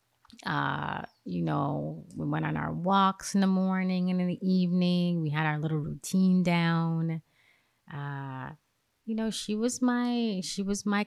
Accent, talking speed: American, 165 wpm